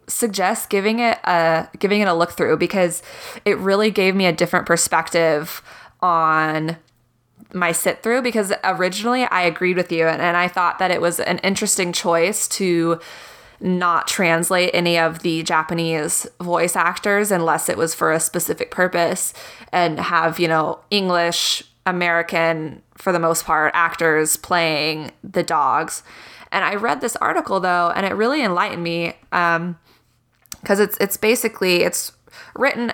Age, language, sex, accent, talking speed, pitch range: 20-39, English, female, American, 155 wpm, 165-195 Hz